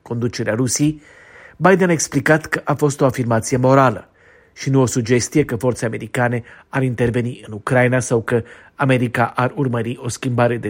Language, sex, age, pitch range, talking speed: Romanian, male, 40-59, 115-140 Hz, 170 wpm